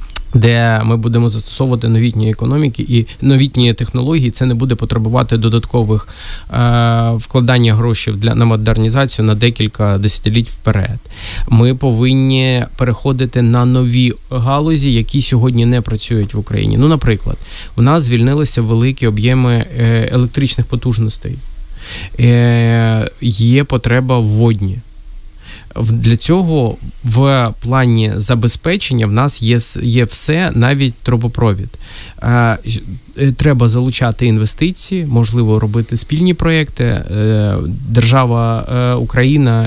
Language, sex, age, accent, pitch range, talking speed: Ukrainian, male, 20-39, native, 110-125 Hz, 105 wpm